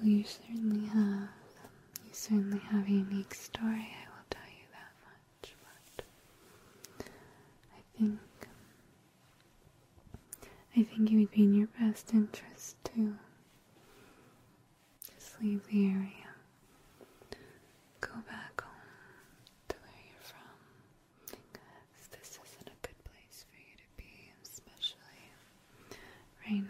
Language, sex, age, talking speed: English, female, 20-39, 115 wpm